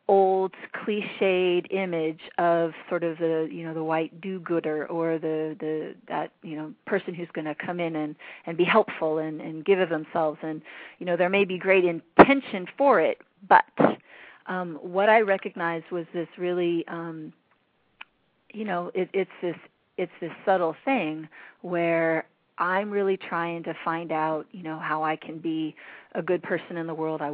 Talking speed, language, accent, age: 180 wpm, English, American, 40-59